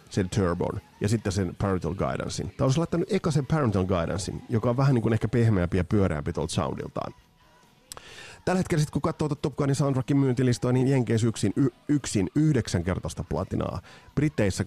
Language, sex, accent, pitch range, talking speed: Finnish, male, native, 100-135 Hz, 175 wpm